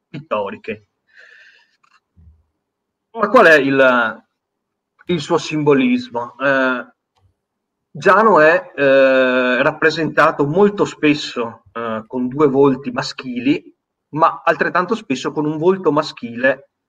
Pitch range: 125-170 Hz